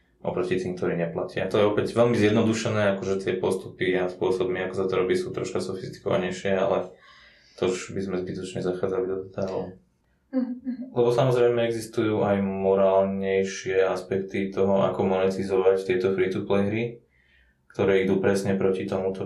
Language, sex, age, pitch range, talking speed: Slovak, male, 20-39, 90-95 Hz, 145 wpm